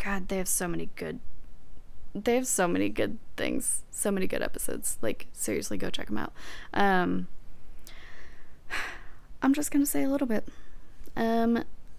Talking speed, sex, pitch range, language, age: 160 wpm, female, 190-255 Hz, English, 10-29